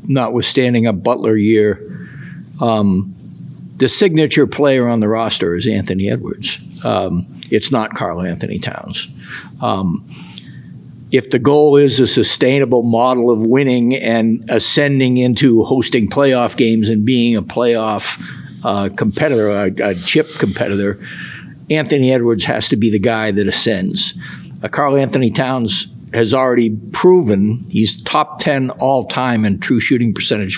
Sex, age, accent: male, 60-79, American